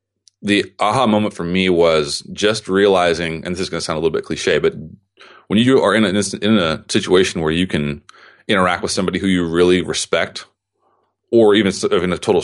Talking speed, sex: 210 wpm, male